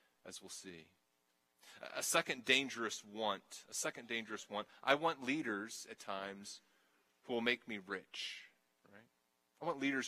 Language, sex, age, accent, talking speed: English, male, 30-49, American, 150 wpm